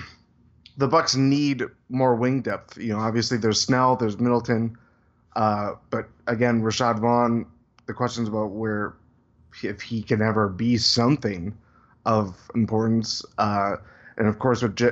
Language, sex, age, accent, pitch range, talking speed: English, male, 20-39, American, 110-125 Hz, 140 wpm